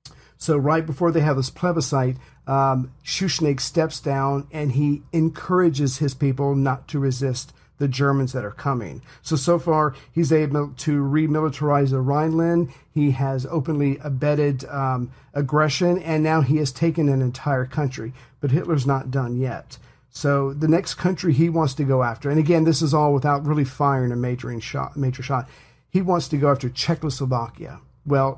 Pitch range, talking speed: 135-150 Hz, 170 wpm